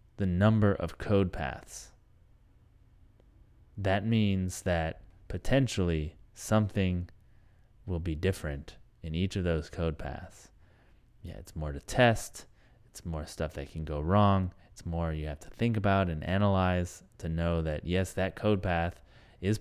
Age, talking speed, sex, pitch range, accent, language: 30-49, 145 wpm, male, 85-115 Hz, American, English